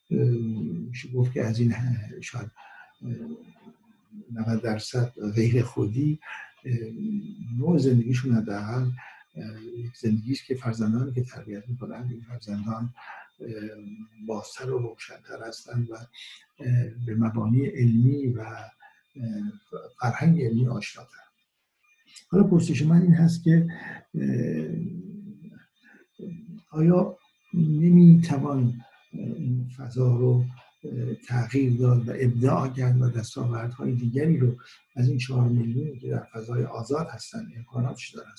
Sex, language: male, Persian